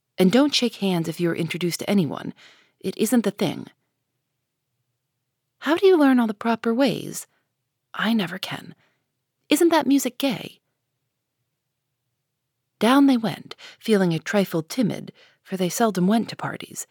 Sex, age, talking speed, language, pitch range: female, 40-59, 150 wpm, English, 140-220 Hz